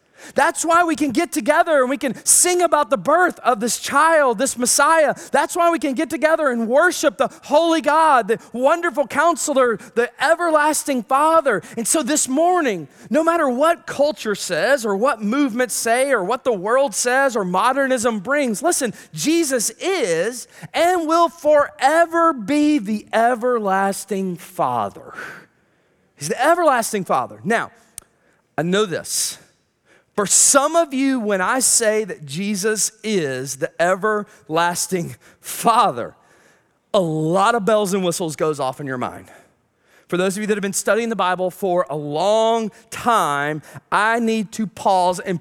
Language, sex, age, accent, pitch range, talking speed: English, male, 30-49, American, 180-285 Hz, 155 wpm